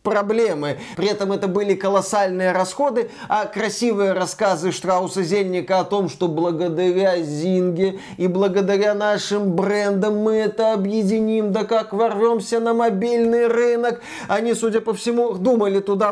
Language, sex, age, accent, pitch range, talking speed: Russian, male, 30-49, native, 190-250 Hz, 130 wpm